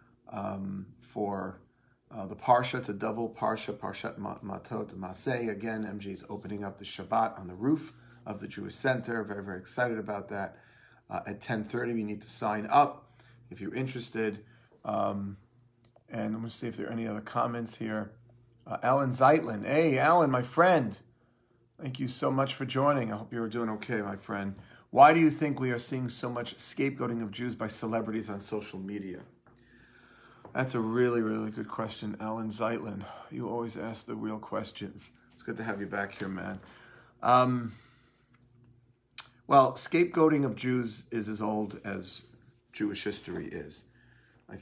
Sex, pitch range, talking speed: male, 105-120 Hz, 170 wpm